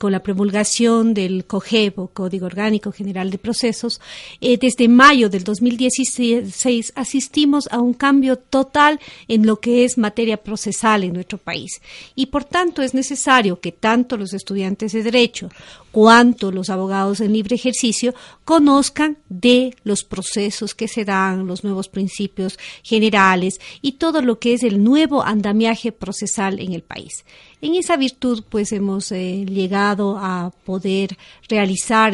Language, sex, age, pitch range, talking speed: Spanish, female, 50-69, 195-245 Hz, 145 wpm